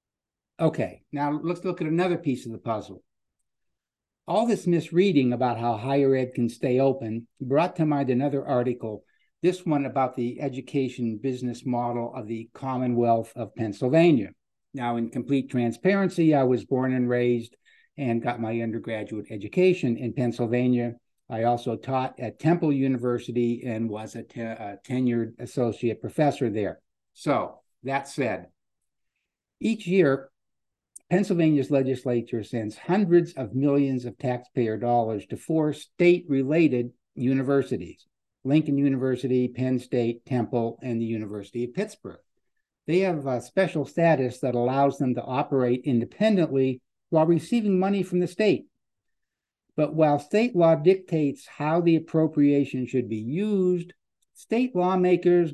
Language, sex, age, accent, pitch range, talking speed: English, male, 60-79, American, 120-165 Hz, 135 wpm